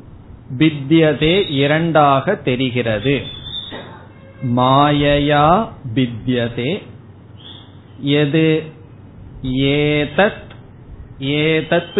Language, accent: Tamil, native